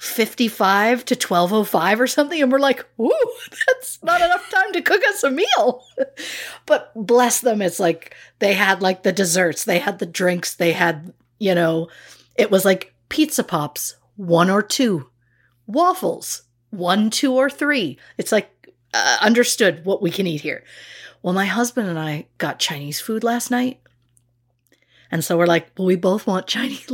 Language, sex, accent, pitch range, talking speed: English, female, American, 170-240 Hz, 170 wpm